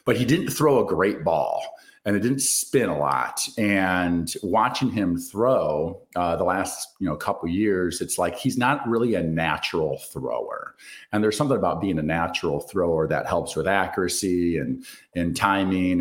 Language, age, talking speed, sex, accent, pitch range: English, 40-59, 180 wpm, male, American, 85-110 Hz